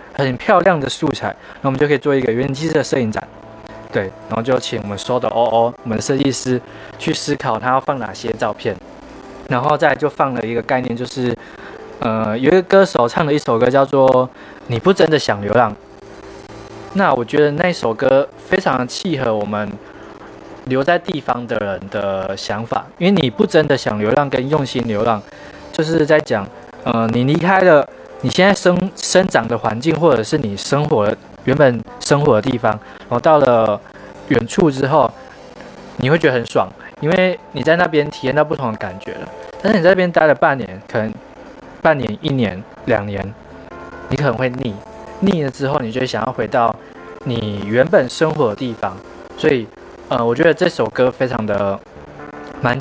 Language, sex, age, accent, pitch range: Chinese, male, 20-39, native, 110-150 Hz